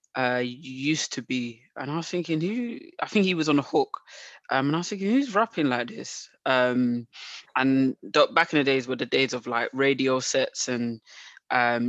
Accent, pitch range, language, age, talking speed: British, 125-140 Hz, English, 20-39, 205 wpm